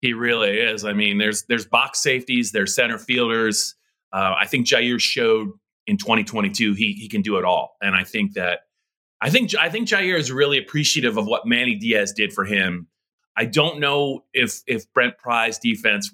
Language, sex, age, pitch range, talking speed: English, male, 30-49, 105-160 Hz, 195 wpm